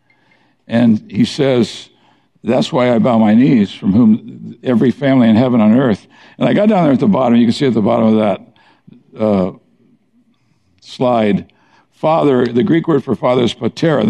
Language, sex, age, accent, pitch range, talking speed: English, male, 60-79, American, 115-160 Hz, 185 wpm